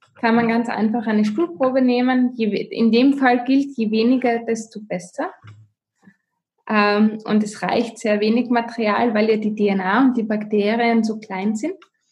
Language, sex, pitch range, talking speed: German, female, 215-255 Hz, 155 wpm